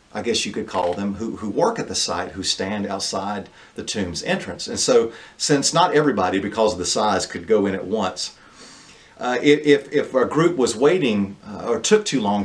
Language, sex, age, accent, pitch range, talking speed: English, male, 50-69, American, 95-145 Hz, 210 wpm